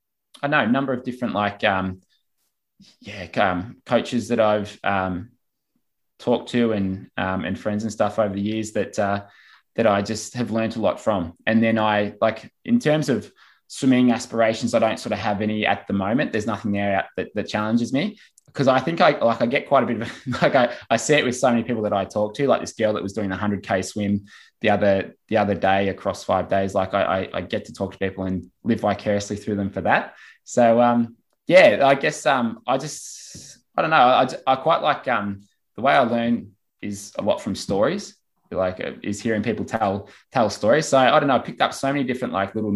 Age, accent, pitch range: 20-39, Australian, 100-115 Hz